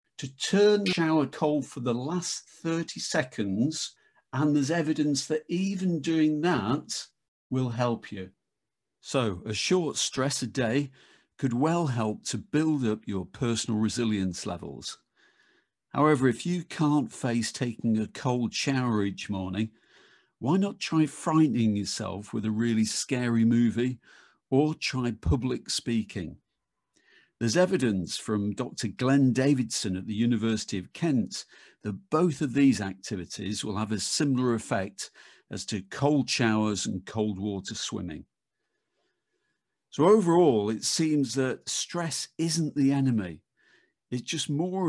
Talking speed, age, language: 135 wpm, 50-69, English